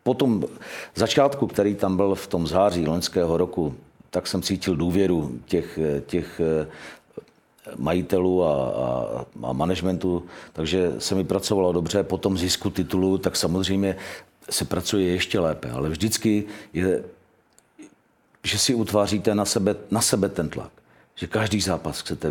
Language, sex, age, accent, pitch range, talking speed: Czech, male, 50-69, native, 85-95 Hz, 145 wpm